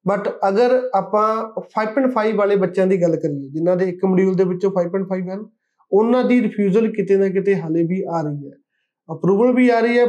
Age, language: 20-39, Punjabi